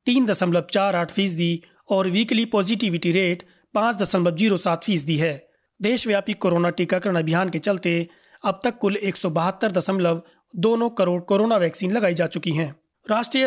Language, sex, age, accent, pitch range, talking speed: Hindi, male, 30-49, native, 170-205 Hz, 155 wpm